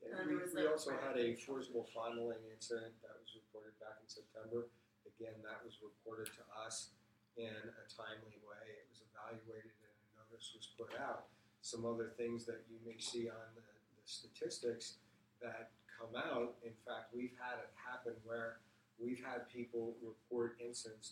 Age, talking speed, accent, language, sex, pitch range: 40-59, 170 wpm, American, English, male, 110-120 Hz